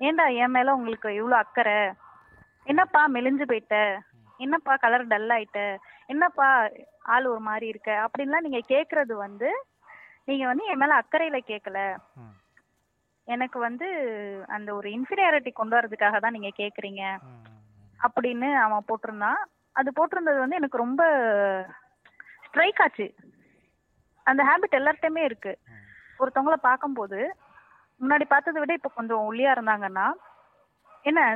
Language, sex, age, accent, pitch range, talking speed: Tamil, female, 20-39, native, 215-295 Hz, 120 wpm